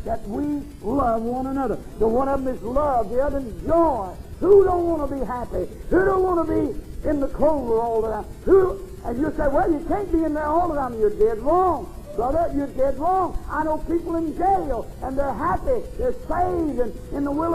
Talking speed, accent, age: 225 wpm, American, 50-69